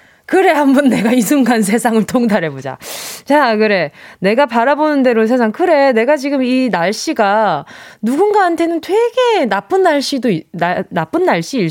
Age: 20-39